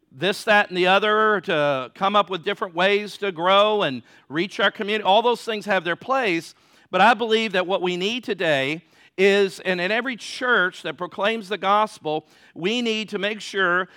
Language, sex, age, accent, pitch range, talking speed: English, male, 50-69, American, 190-235 Hz, 195 wpm